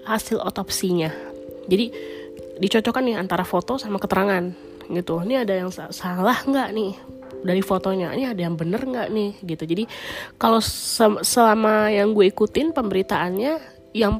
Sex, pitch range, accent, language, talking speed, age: female, 180-220 Hz, native, Indonesian, 145 wpm, 20-39